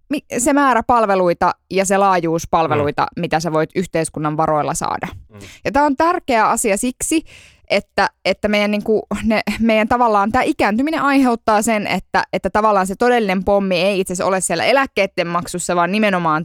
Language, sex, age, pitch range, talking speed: Finnish, female, 20-39, 175-240 Hz, 150 wpm